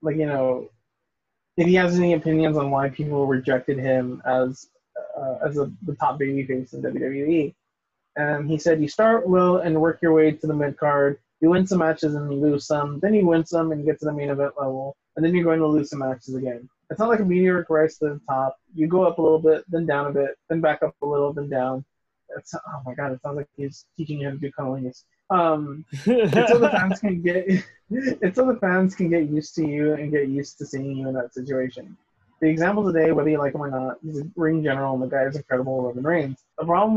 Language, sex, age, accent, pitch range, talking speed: English, male, 20-39, American, 140-170 Hz, 245 wpm